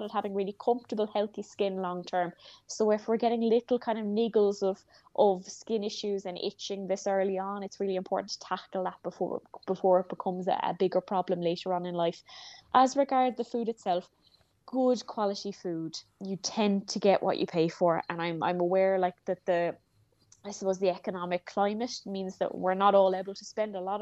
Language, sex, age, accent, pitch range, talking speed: English, female, 20-39, Irish, 185-215 Hz, 200 wpm